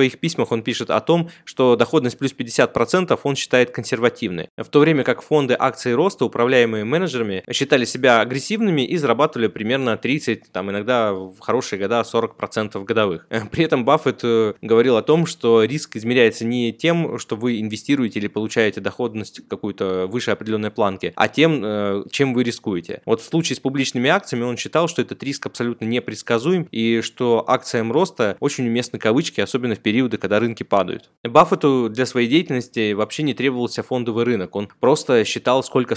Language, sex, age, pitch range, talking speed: Russian, male, 20-39, 110-140 Hz, 170 wpm